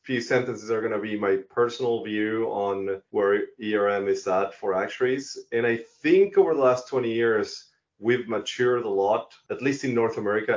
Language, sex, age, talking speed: English, male, 30-49, 185 wpm